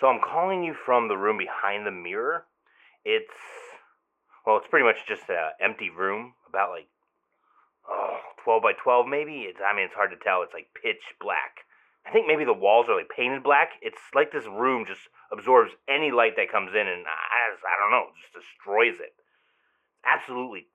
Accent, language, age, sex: American, English, 30-49, male